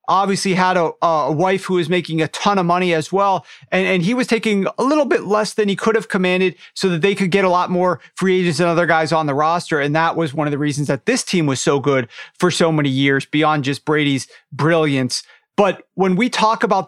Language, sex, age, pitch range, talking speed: English, male, 40-59, 155-185 Hz, 250 wpm